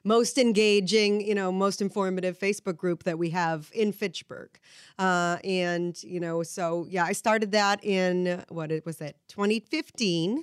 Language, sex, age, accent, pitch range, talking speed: English, female, 30-49, American, 190-240 Hz, 165 wpm